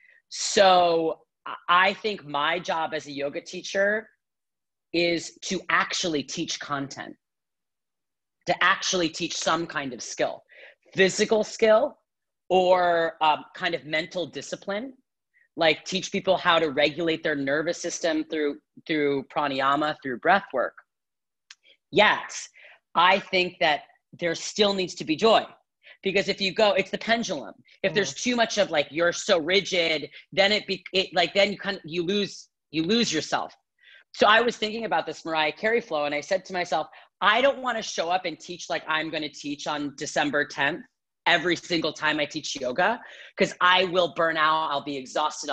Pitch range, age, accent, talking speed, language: 155-195 Hz, 40-59, American, 165 wpm, English